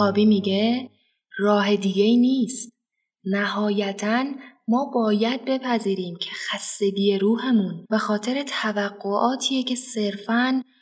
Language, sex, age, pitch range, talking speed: Persian, female, 20-39, 200-240 Hz, 95 wpm